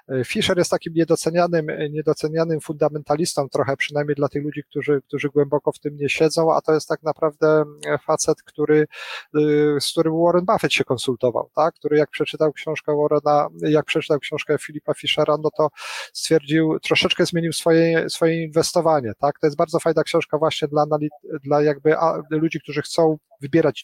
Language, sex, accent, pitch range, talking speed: Polish, male, native, 140-160 Hz, 160 wpm